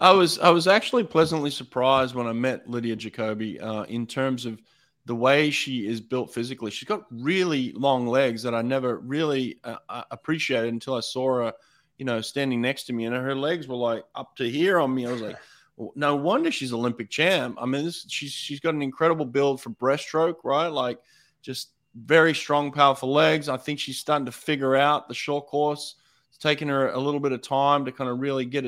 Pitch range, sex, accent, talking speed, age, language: 115-145 Hz, male, Australian, 215 wpm, 20-39, English